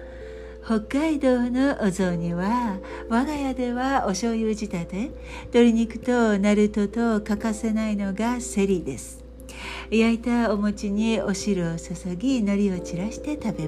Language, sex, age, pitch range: Japanese, female, 60-79, 185-245 Hz